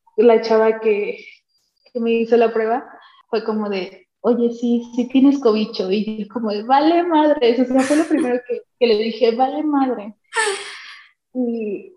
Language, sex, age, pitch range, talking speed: Spanish, female, 20-39, 205-245 Hz, 165 wpm